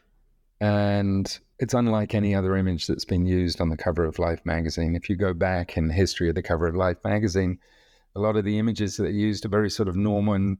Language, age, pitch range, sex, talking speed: English, 40-59, 85-100 Hz, male, 225 wpm